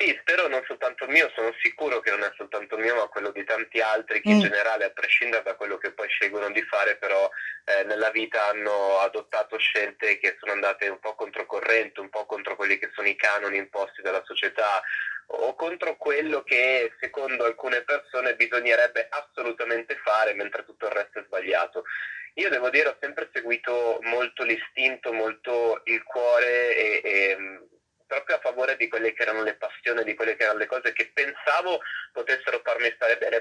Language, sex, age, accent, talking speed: Italian, male, 20-39, native, 185 wpm